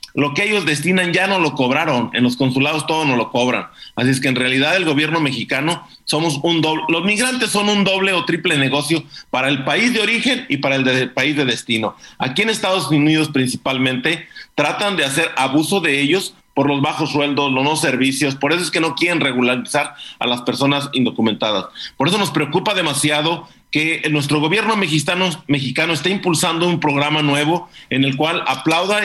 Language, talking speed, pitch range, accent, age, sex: Spanish, 195 wpm, 140-180 Hz, Mexican, 40-59, male